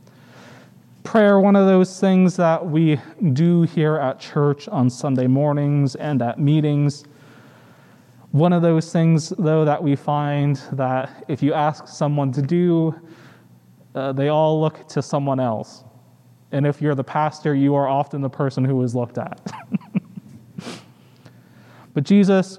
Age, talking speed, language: 20-39, 145 wpm, English